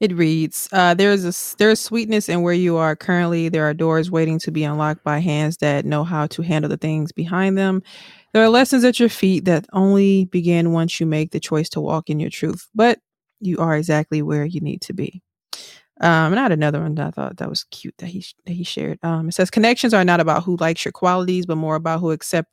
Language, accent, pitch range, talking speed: English, American, 160-190 Hz, 240 wpm